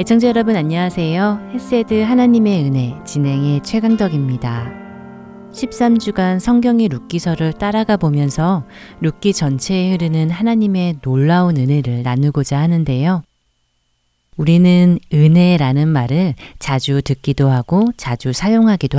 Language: Korean